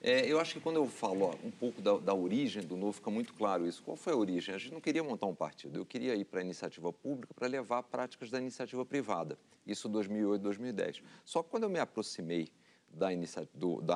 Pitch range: 100-135 Hz